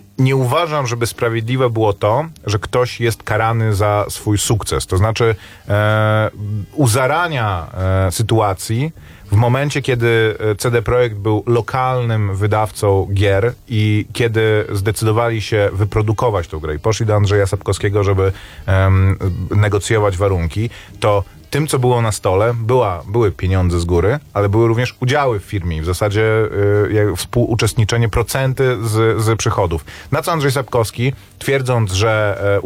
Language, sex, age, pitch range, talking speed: Polish, male, 30-49, 105-120 Hz, 135 wpm